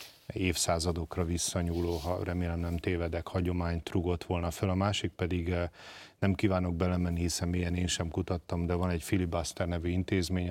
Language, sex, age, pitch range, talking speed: Hungarian, male, 40-59, 85-100 Hz, 155 wpm